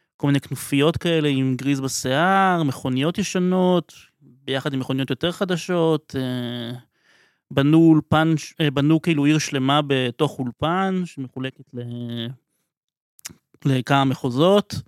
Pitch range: 130-165 Hz